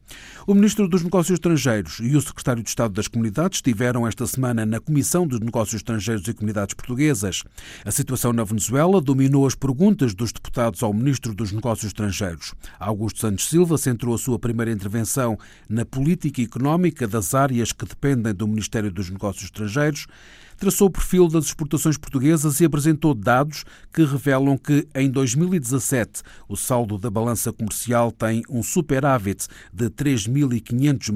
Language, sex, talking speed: Portuguese, male, 155 wpm